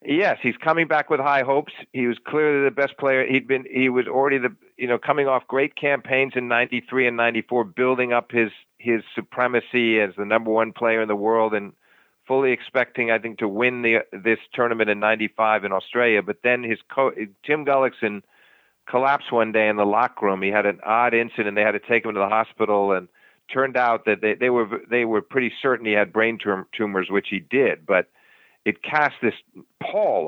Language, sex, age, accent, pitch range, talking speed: English, male, 50-69, American, 110-130 Hz, 210 wpm